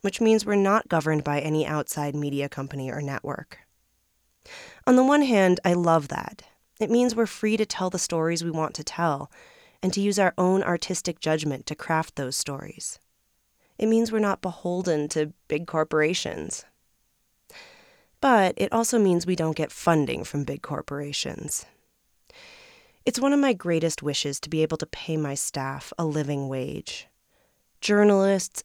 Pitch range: 150-205 Hz